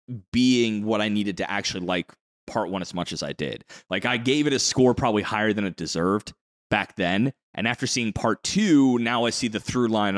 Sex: male